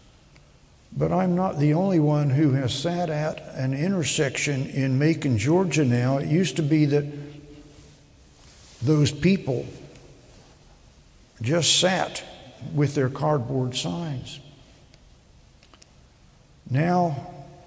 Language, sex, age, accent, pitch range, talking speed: English, male, 60-79, American, 135-175 Hz, 100 wpm